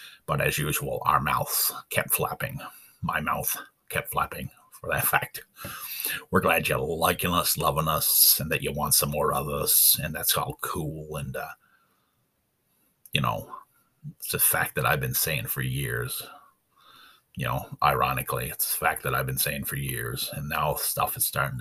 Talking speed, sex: 175 wpm, male